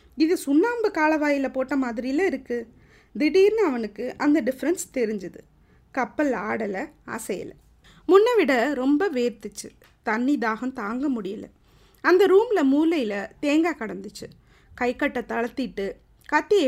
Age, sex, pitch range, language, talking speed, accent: 30-49, female, 235-315 Hz, Tamil, 110 wpm, native